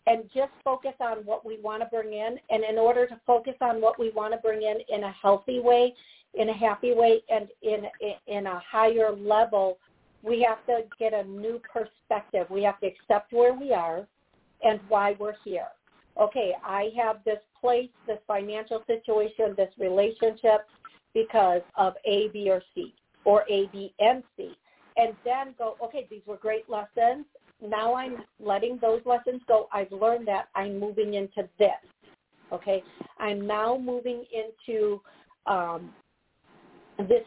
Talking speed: 165 wpm